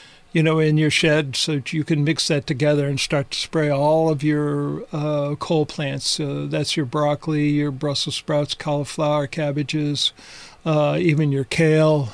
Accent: American